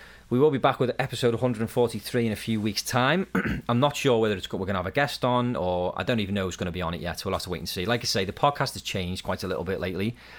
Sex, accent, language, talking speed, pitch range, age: male, British, English, 310 wpm, 90-110 Hz, 30-49